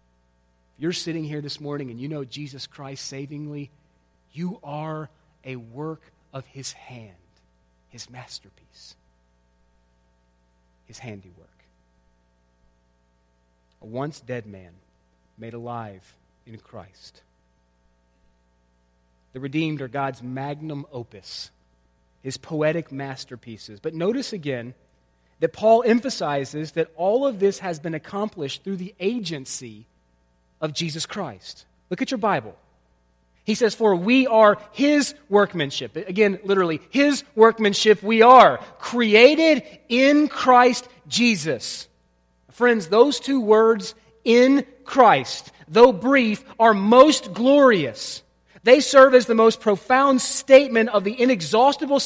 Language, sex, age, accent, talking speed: English, male, 30-49, American, 115 wpm